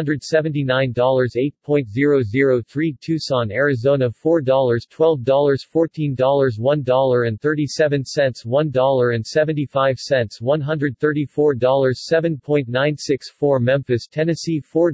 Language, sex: English, male